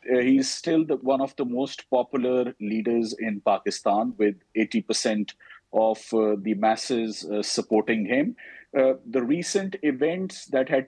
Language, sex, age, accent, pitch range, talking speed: English, male, 50-69, Indian, 105-140 Hz, 150 wpm